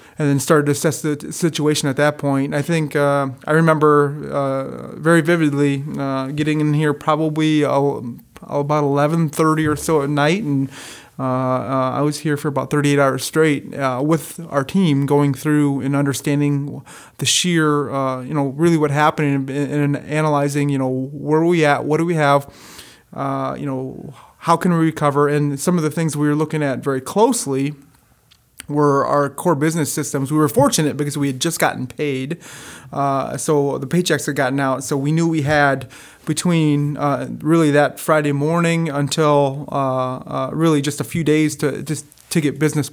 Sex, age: male, 30-49